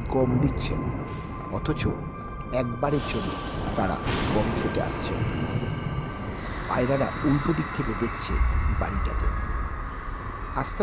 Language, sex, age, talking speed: Bengali, male, 60-79, 90 wpm